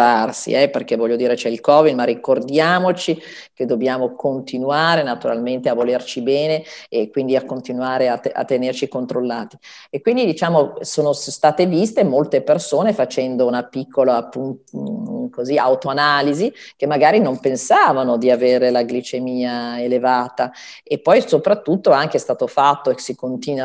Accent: native